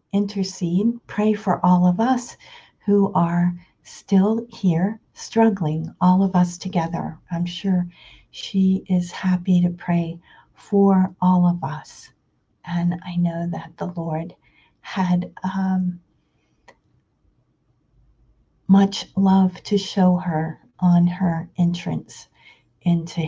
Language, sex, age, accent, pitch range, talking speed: English, female, 50-69, American, 170-190 Hz, 110 wpm